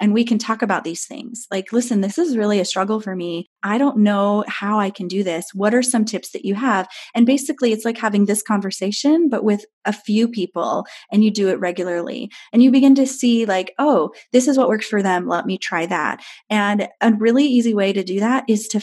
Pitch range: 195-235 Hz